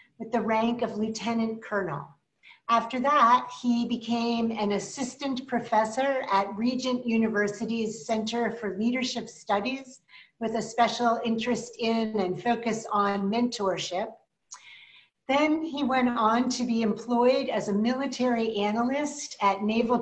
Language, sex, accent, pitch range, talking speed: English, female, American, 205-245 Hz, 125 wpm